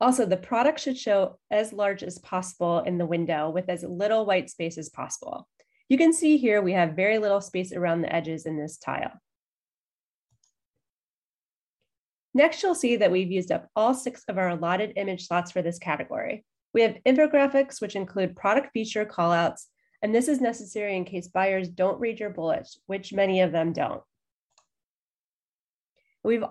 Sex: female